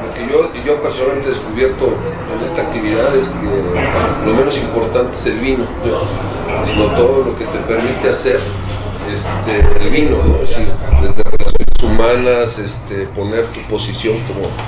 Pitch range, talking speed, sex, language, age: 100-125 Hz, 170 wpm, male, Spanish, 40-59